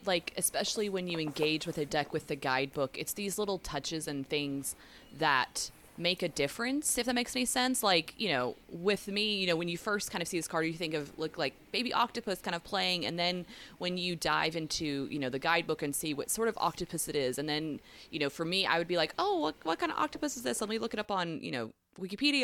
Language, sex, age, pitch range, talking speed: English, female, 20-39, 150-205 Hz, 255 wpm